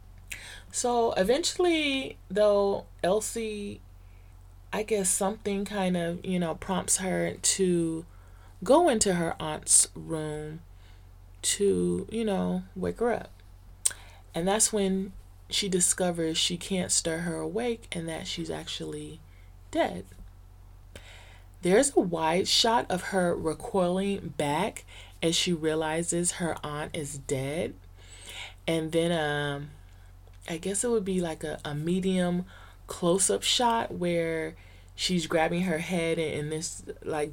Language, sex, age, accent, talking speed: English, female, 30-49, American, 125 wpm